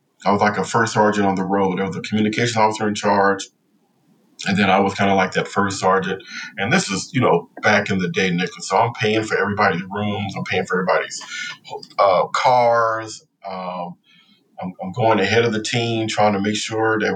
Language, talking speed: English, 215 wpm